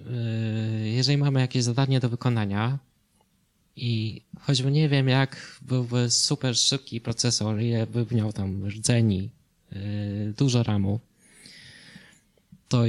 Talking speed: 105 wpm